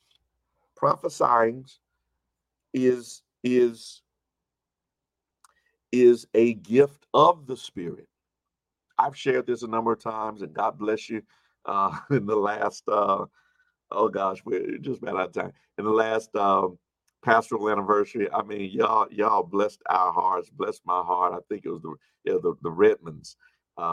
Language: English